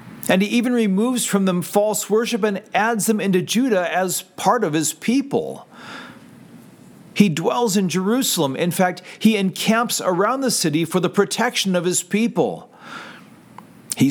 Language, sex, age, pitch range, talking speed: English, male, 40-59, 155-210 Hz, 155 wpm